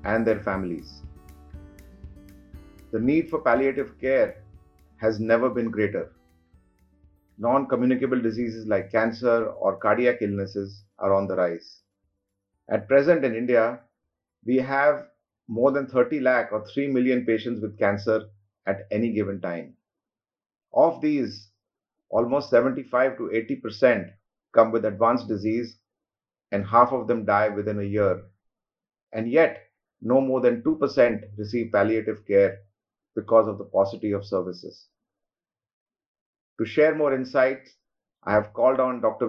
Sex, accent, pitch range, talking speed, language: male, Indian, 100-125 Hz, 135 wpm, English